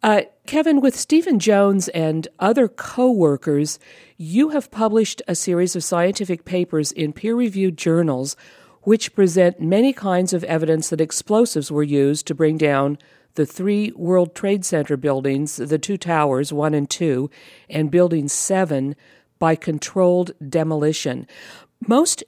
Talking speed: 135 wpm